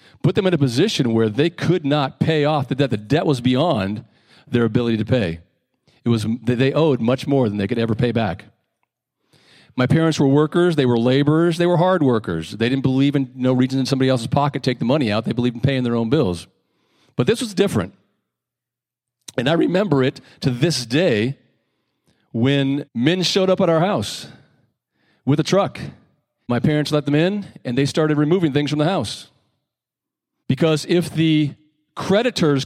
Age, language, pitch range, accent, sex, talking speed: 40-59, English, 125-165 Hz, American, male, 190 wpm